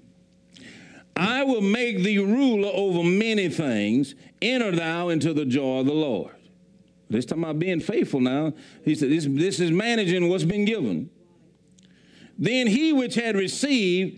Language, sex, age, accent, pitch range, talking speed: English, male, 50-69, American, 150-225 Hz, 150 wpm